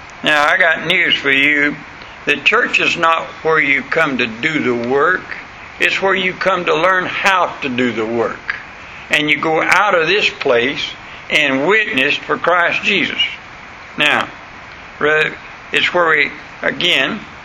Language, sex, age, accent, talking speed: English, male, 60-79, American, 155 wpm